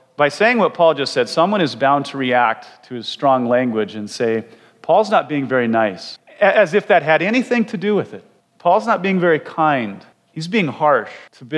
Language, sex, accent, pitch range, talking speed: English, male, American, 115-140 Hz, 200 wpm